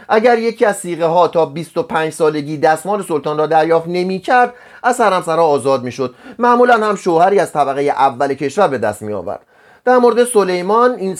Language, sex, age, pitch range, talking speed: Persian, male, 30-49, 150-225 Hz, 180 wpm